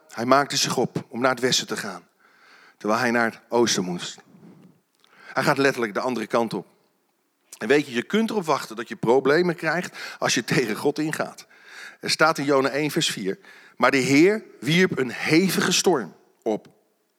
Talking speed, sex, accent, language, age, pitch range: 190 wpm, male, Dutch, Dutch, 40-59, 140-215 Hz